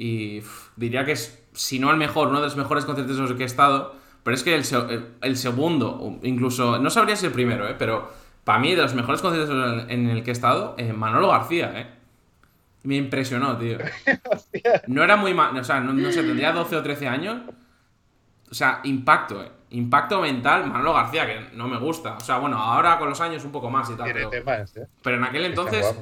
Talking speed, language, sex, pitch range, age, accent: 220 wpm, Spanish, male, 115-145 Hz, 20-39, Spanish